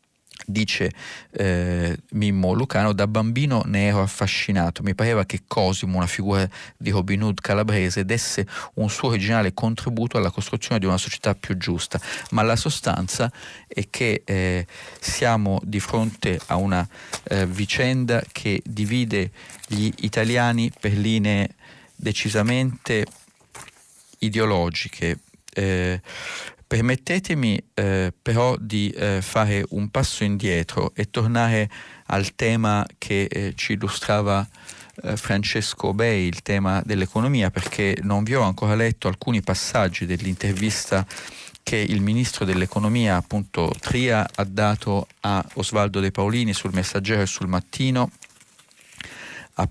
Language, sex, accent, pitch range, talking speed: Italian, male, native, 95-115 Hz, 125 wpm